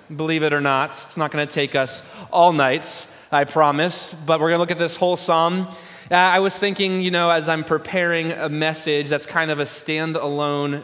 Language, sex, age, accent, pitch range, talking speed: English, male, 20-39, American, 150-175 Hz, 215 wpm